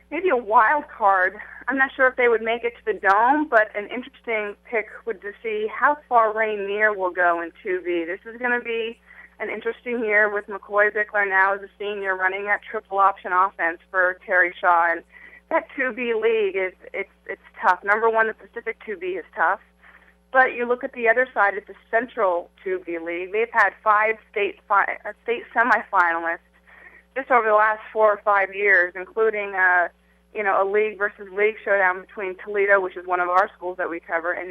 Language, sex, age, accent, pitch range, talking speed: English, female, 30-49, American, 185-230 Hz, 200 wpm